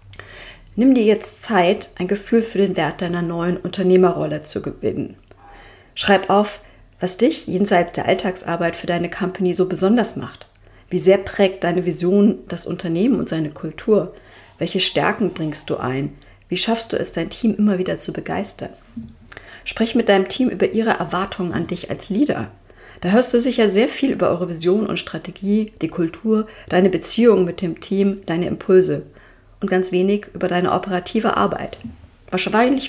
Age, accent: 40-59, German